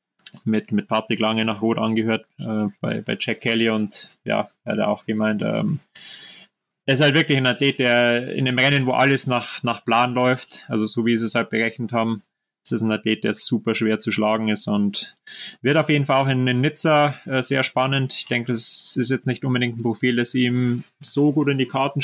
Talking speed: 225 wpm